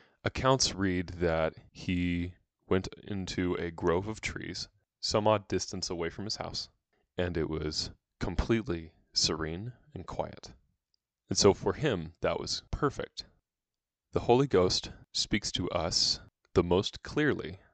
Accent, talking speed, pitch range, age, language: American, 135 wpm, 85-105 Hz, 20-39, English